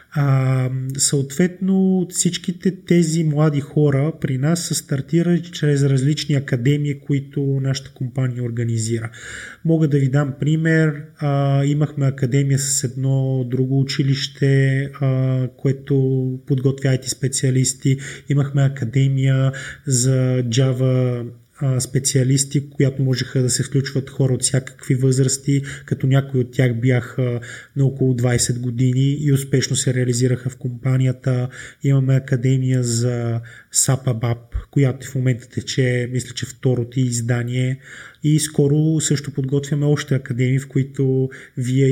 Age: 20-39